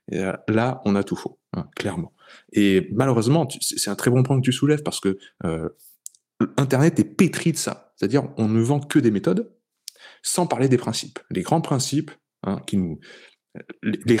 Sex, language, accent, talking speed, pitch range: male, French, French, 180 wpm, 100-130 Hz